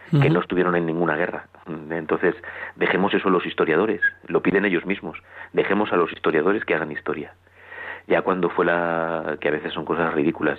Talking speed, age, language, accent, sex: 185 wpm, 30-49, Spanish, Spanish, male